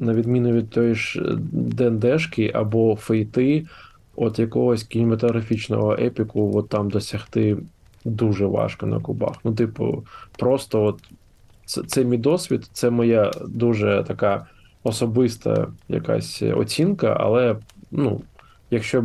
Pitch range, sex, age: 105-120 Hz, male, 20-39